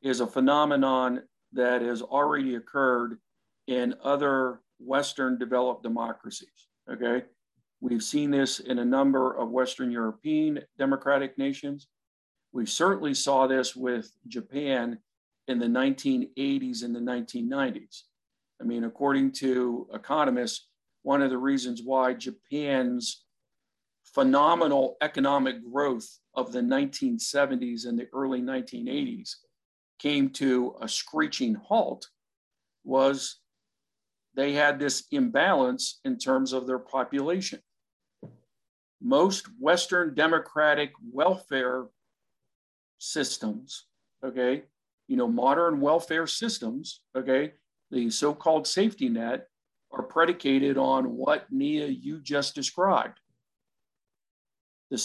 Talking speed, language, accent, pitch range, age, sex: 105 wpm, English, American, 130-195 Hz, 50-69, male